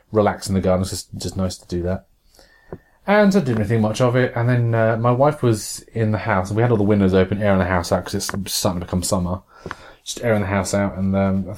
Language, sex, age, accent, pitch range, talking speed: English, male, 30-49, British, 95-120 Hz, 270 wpm